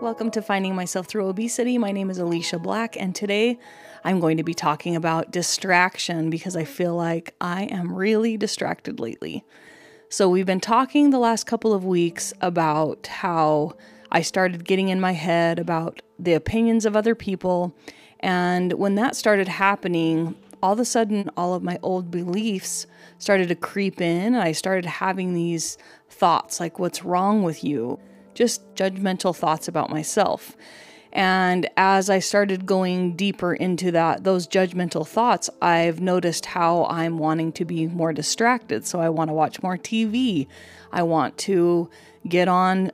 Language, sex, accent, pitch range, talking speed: English, female, American, 170-200 Hz, 165 wpm